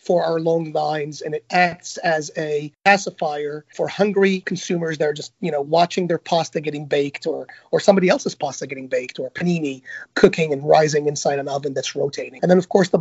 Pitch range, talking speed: 160-200 Hz, 210 wpm